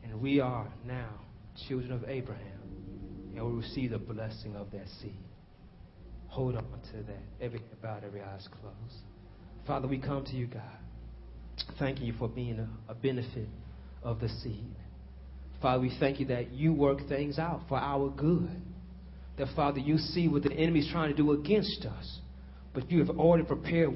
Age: 40-59